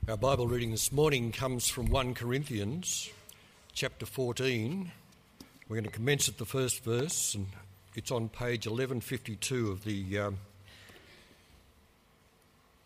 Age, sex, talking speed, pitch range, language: 60-79, male, 125 wpm, 105-135 Hz, English